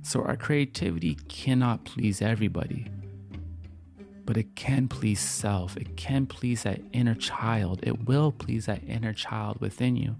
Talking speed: 145 wpm